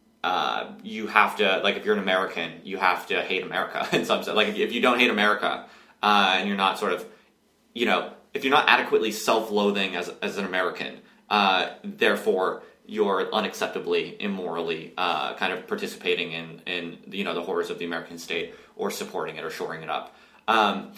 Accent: American